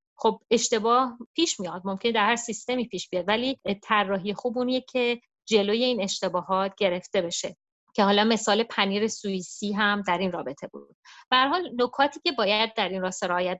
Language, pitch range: Persian, 180-230 Hz